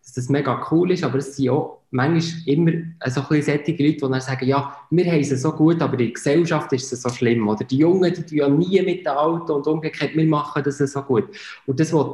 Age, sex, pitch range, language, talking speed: 20-39, male, 130-155 Hz, German, 250 wpm